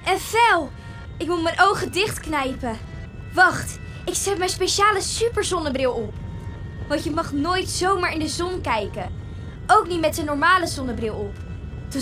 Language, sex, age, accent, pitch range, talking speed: Dutch, female, 20-39, Dutch, 315-395 Hz, 155 wpm